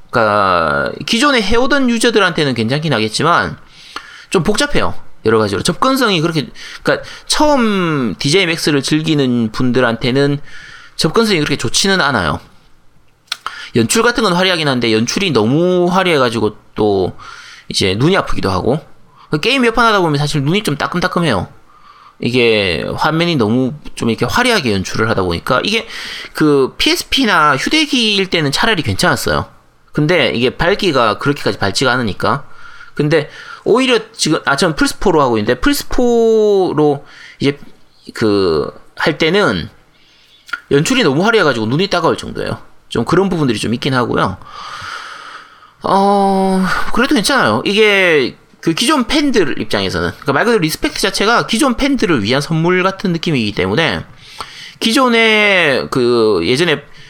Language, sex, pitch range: Korean, male, 140-235 Hz